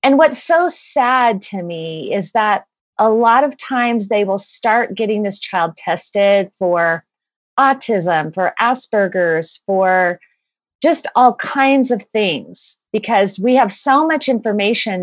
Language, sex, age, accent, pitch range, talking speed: English, female, 40-59, American, 185-255 Hz, 140 wpm